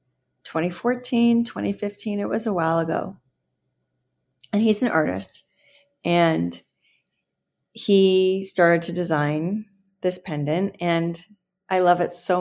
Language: English